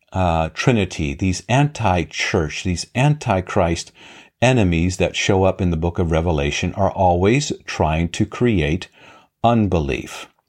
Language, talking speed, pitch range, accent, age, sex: English, 130 wpm, 85-110 Hz, American, 50-69, male